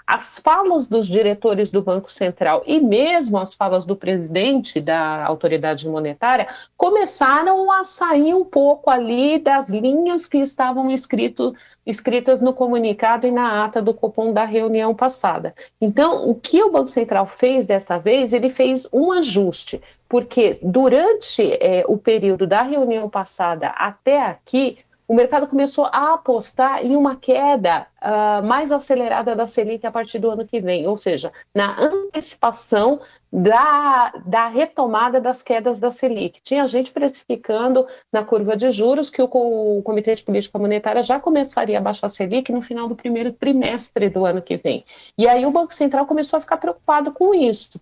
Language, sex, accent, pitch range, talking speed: Portuguese, female, Brazilian, 215-280 Hz, 160 wpm